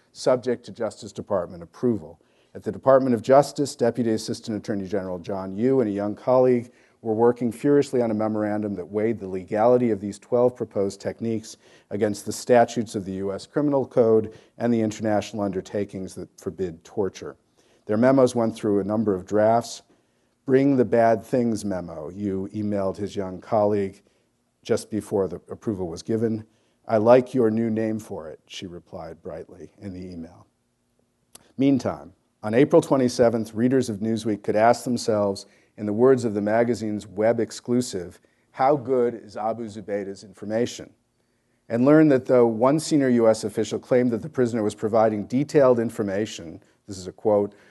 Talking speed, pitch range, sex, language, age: 165 wpm, 100-120 Hz, male, English, 50-69